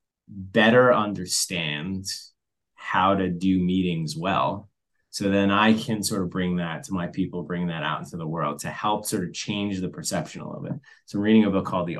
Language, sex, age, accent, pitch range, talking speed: English, male, 20-39, American, 90-105 Hz, 205 wpm